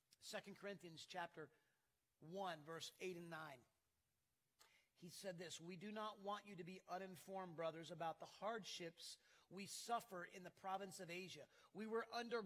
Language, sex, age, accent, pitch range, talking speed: English, male, 40-59, American, 185-240 Hz, 160 wpm